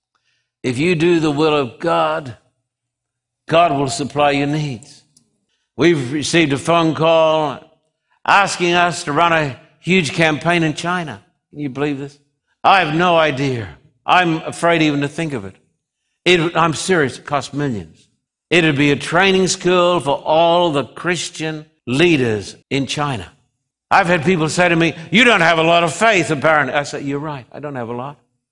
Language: English